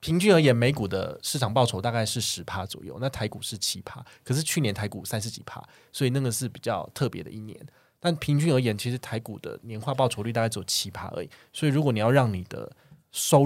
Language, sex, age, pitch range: Chinese, male, 20-39, 105-135 Hz